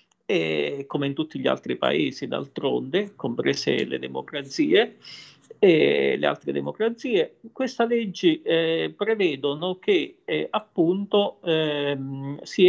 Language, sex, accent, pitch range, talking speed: Italian, male, native, 150-205 Hz, 115 wpm